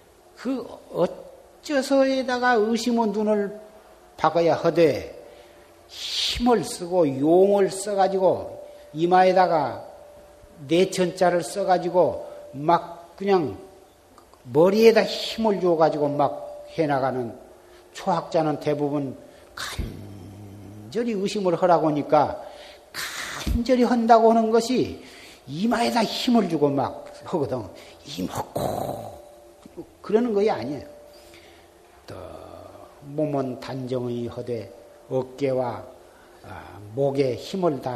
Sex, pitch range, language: male, 120-195 Hz, Korean